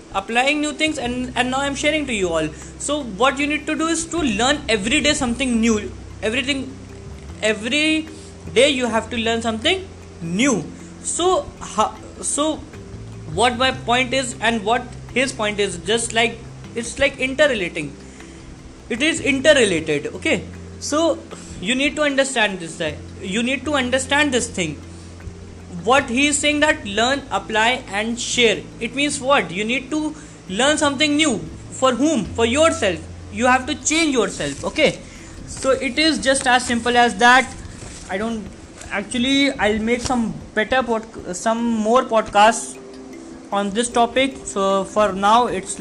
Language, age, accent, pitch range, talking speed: English, 20-39, Indian, 195-270 Hz, 155 wpm